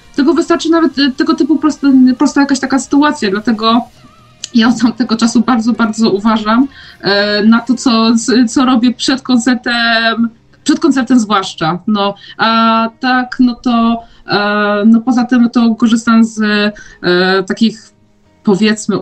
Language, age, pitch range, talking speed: Polish, 20-39, 205-250 Hz, 125 wpm